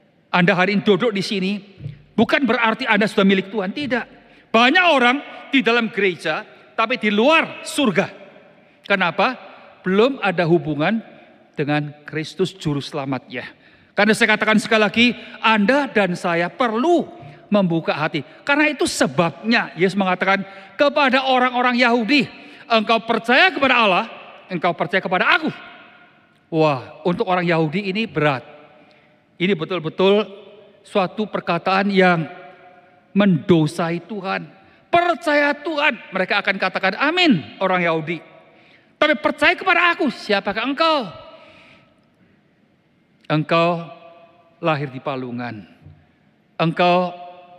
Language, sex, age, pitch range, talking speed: Indonesian, male, 50-69, 175-250 Hz, 110 wpm